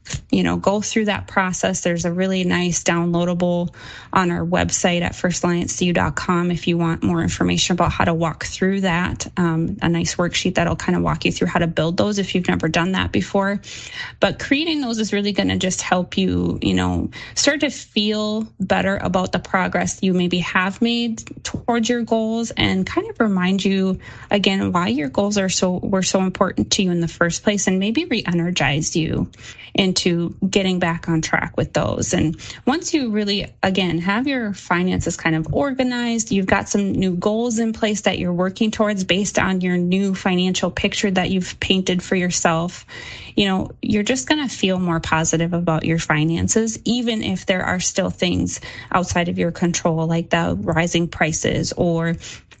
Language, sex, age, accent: English, female, 20-39, American